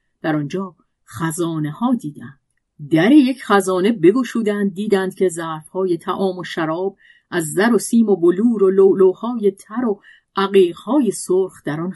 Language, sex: Persian, female